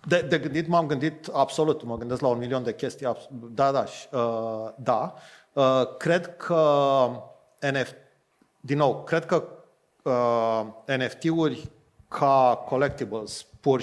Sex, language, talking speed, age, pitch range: male, Romanian, 135 wpm, 40-59, 125-160 Hz